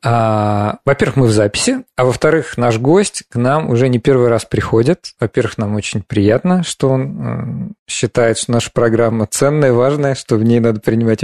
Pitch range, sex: 110-140 Hz, male